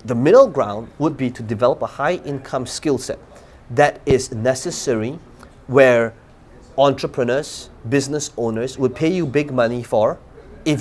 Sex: male